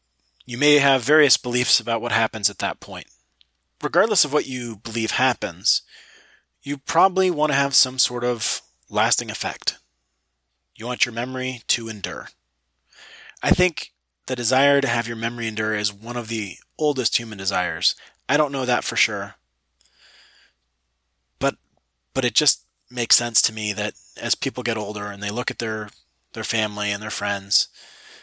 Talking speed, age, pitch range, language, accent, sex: 165 wpm, 30-49, 75-125 Hz, English, American, male